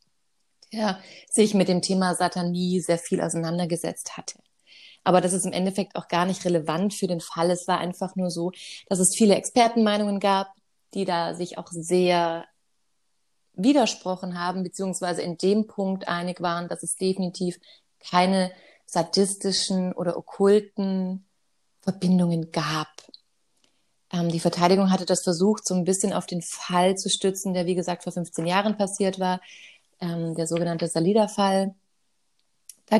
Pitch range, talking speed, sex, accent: 175-200 Hz, 145 wpm, female, German